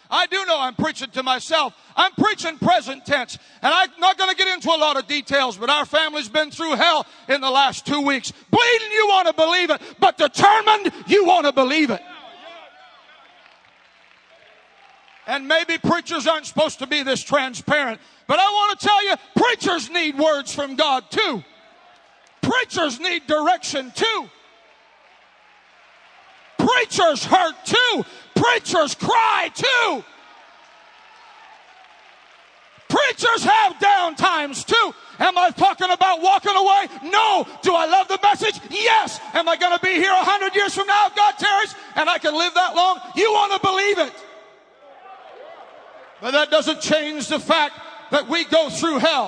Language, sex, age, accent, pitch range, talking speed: English, male, 50-69, American, 300-400 Hz, 160 wpm